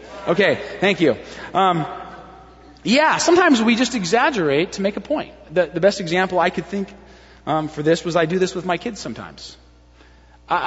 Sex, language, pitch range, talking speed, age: male, English, 160-230 Hz, 180 wpm, 30-49